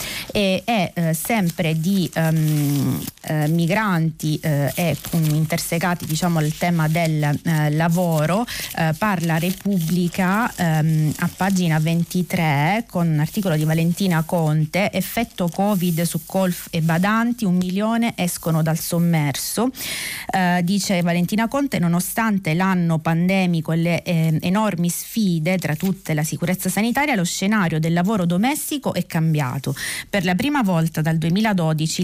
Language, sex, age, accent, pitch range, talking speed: Italian, female, 30-49, native, 160-195 Hz, 125 wpm